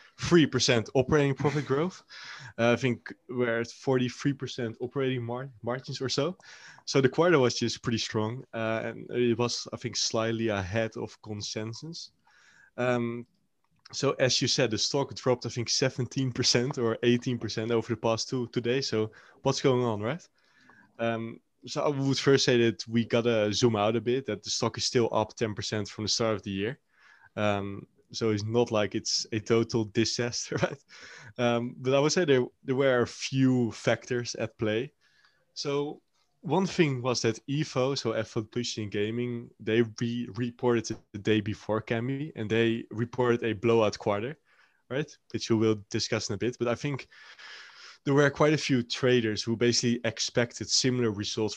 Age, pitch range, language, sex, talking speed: 20-39, 110-130 Hz, Danish, male, 175 wpm